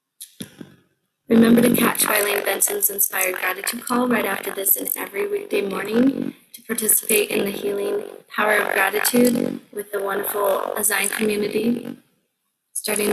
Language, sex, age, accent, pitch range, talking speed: English, female, 20-39, American, 200-250 Hz, 135 wpm